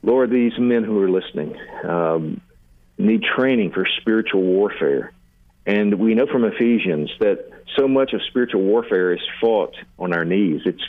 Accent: American